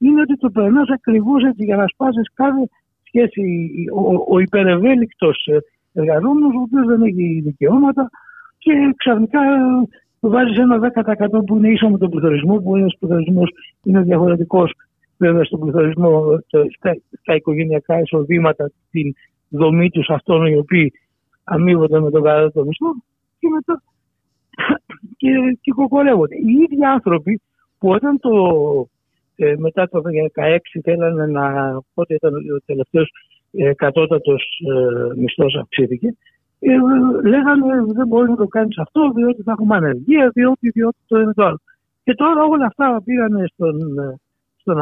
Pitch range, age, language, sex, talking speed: 155-255 Hz, 60-79, Greek, male, 135 wpm